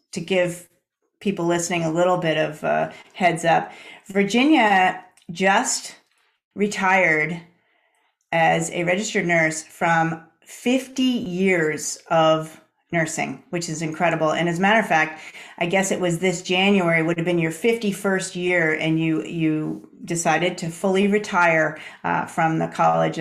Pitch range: 165-190 Hz